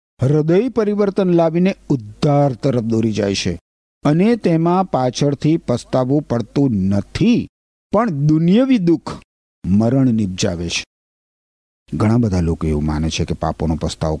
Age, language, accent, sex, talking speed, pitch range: 50-69, Gujarati, native, male, 115 wpm, 110-180 Hz